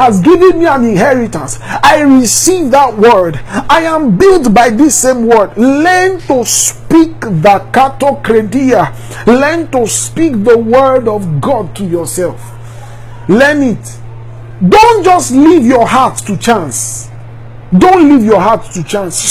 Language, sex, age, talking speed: English, male, 50-69, 140 wpm